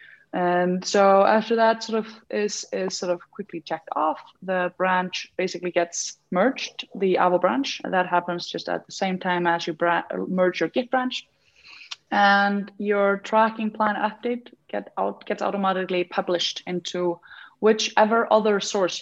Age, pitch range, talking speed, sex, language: 20-39, 165-210 Hz, 160 wpm, female, English